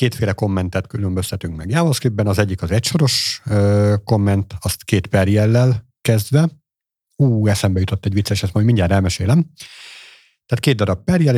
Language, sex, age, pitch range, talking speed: Hungarian, male, 50-69, 95-120 Hz, 155 wpm